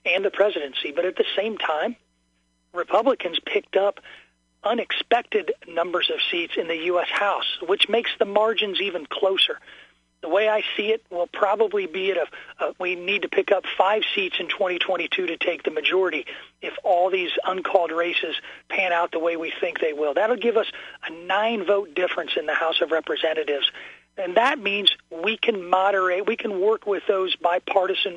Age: 40-59